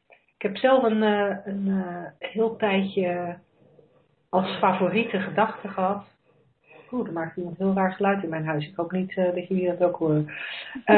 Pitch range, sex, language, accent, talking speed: 175-210 Hz, female, Dutch, Dutch, 170 wpm